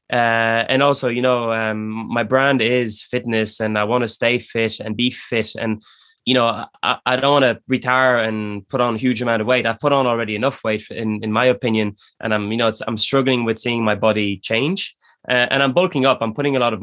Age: 20-39